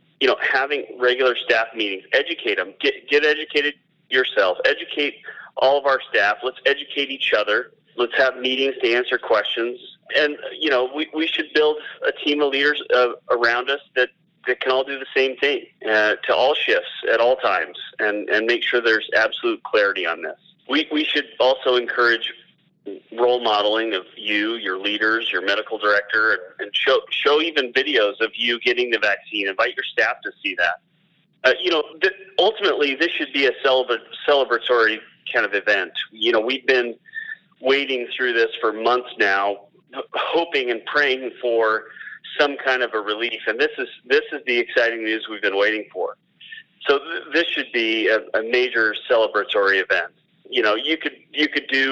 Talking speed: 185 wpm